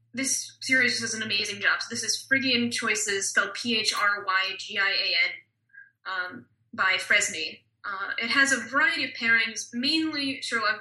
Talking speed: 140 wpm